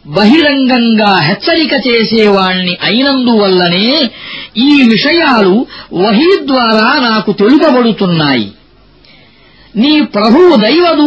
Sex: female